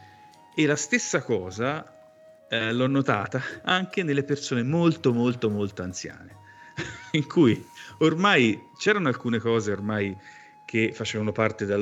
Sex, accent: male, native